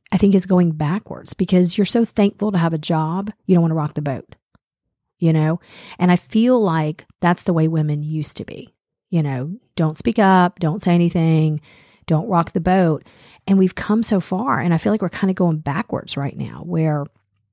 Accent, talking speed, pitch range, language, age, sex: American, 210 wpm, 155-190 Hz, English, 40-59, female